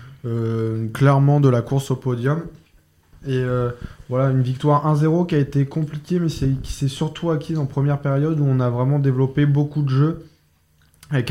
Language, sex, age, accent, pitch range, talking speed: French, male, 20-39, French, 120-145 Hz, 185 wpm